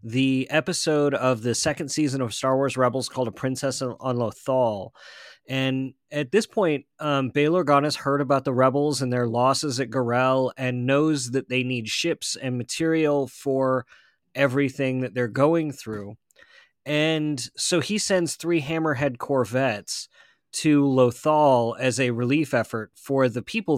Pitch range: 125-150 Hz